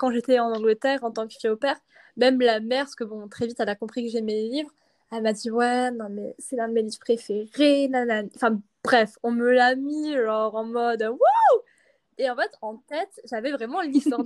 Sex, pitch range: female, 225-280 Hz